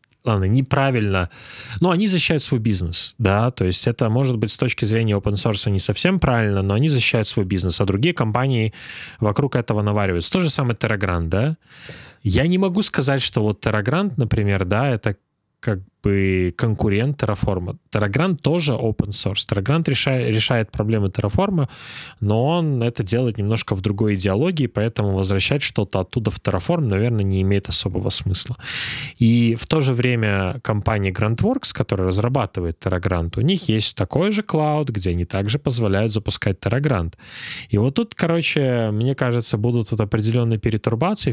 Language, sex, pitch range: Russian, male, 100-130 Hz